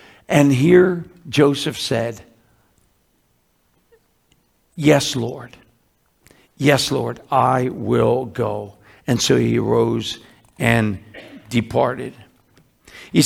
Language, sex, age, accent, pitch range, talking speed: English, male, 60-79, American, 130-185 Hz, 80 wpm